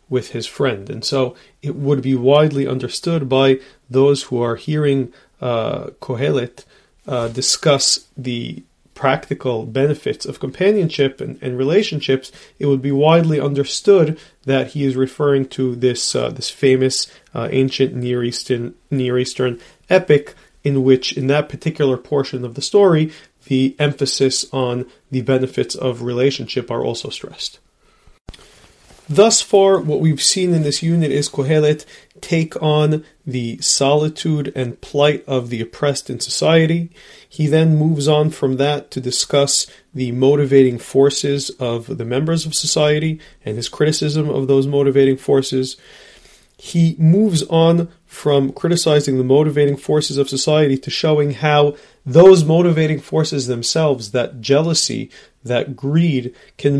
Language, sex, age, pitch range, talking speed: English, male, 40-59, 130-155 Hz, 140 wpm